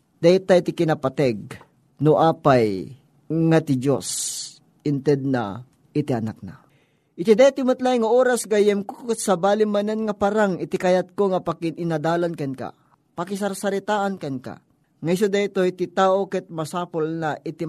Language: Filipino